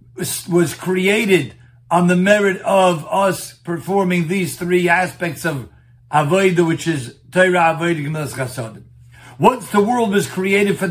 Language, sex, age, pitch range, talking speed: English, male, 50-69, 145-190 Hz, 115 wpm